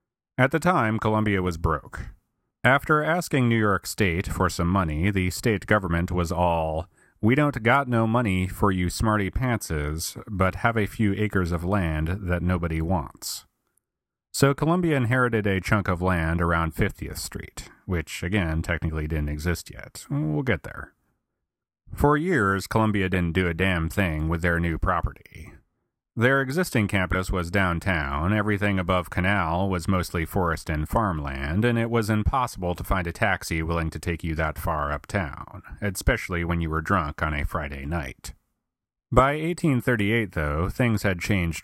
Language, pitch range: English, 85-110 Hz